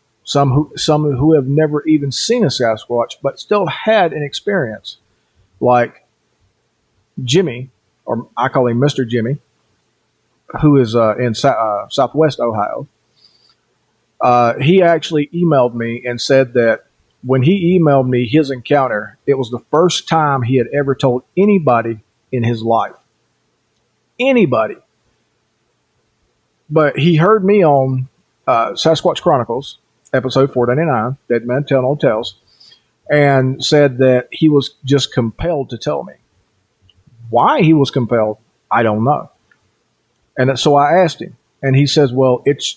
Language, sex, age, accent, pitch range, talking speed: English, male, 40-59, American, 120-150 Hz, 140 wpm